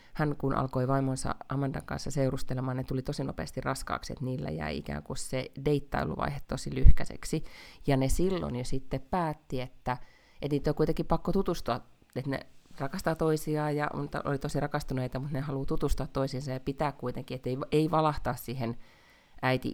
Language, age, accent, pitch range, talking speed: Finnish, 30-49, native, 125-150 Hz, 175 wpm